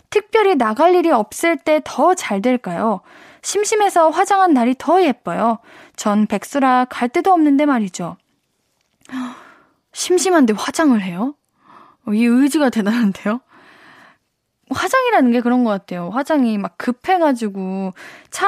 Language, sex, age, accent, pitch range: Korean, female, 10-29, native, 225-335 Hz